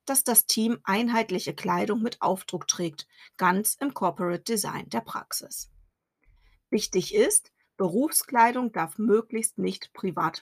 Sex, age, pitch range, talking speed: female, 40-59, 180-230 Hz, 120 wpm